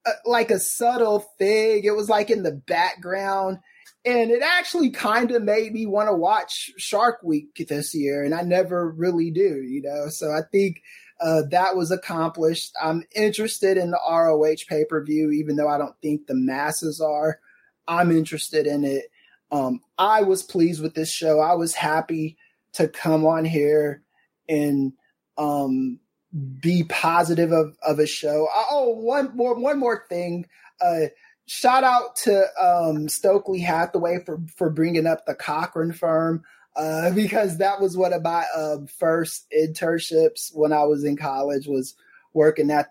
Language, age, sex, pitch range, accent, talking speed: English, 20-39, male, 150-190 Hz, American, 160 wpm